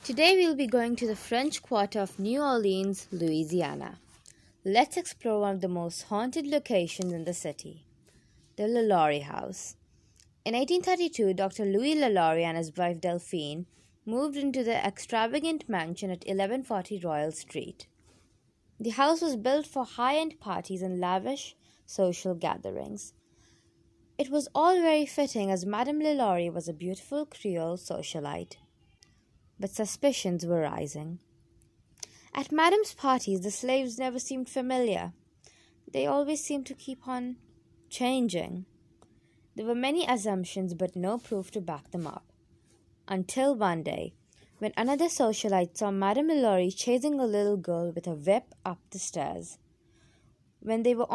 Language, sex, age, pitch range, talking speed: English, female, 20-39, 185-270 Hz, 140 wpm